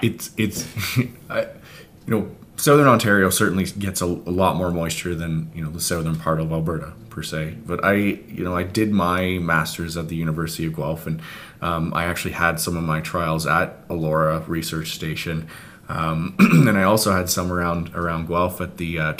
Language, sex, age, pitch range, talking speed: English, male, 20-39, 85-105 Hz, 190 wpm